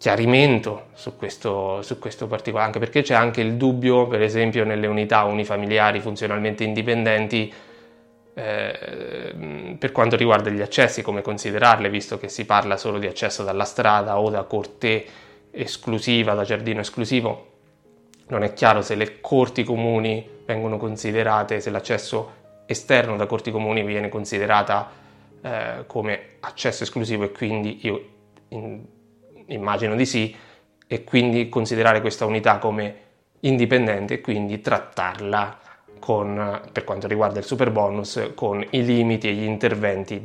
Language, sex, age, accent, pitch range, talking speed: Italian, male, 20-39, native, 100-115 Hz, 135 wpm